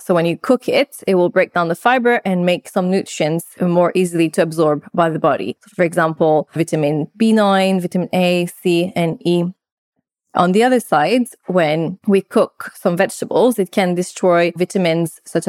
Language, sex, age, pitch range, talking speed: English, female, 20-39, 170-200 Hz, 175 wpm